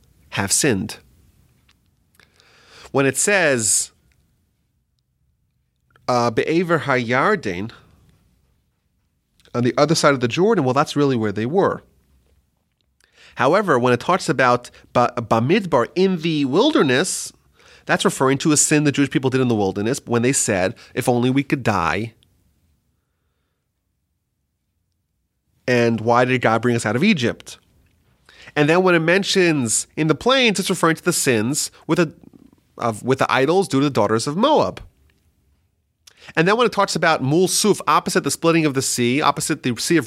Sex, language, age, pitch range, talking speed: male, English, 30-49, 115-160 Hz, 150 wpm